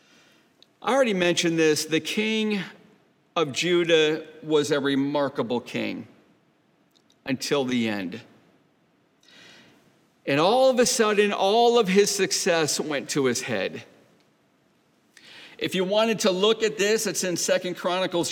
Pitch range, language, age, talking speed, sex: 160-220 Hz, English, 50-69, 130 wpm, male